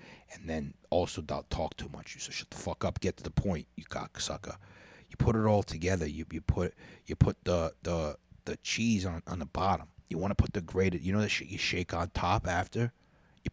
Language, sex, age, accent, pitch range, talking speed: English, male, 30-49, American, 85-105 Hz, 235 wpm